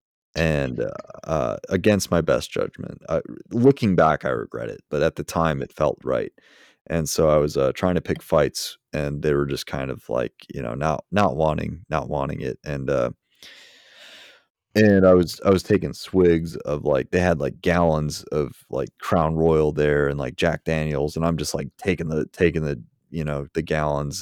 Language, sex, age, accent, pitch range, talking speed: English, male, 30-49, American, 75-90 Hz, 200 wpm